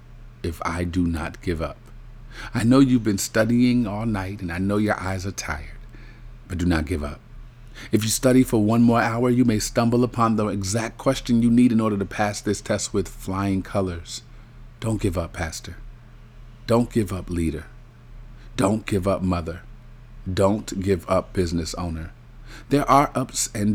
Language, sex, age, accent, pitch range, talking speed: English, male, 40-59, American, 95-120 Hz, 180 wpm